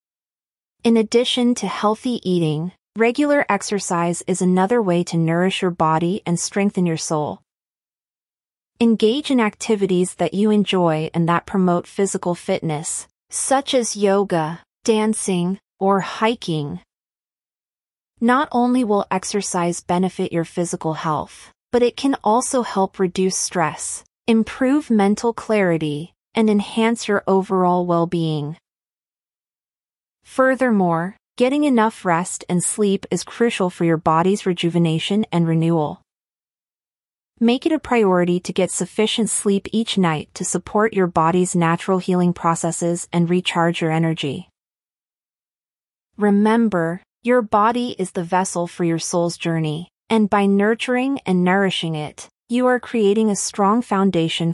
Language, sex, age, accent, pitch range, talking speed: English, female, 30-49, American, 170-220 Hz, 125 wpm